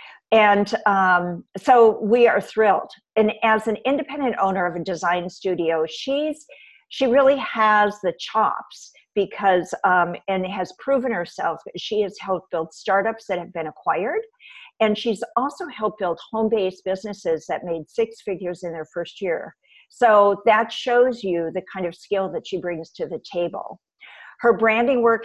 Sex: female